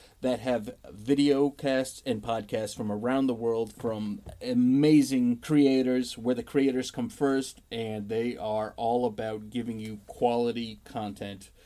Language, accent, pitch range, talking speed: English, American, 105-135 Hz, 140 wpm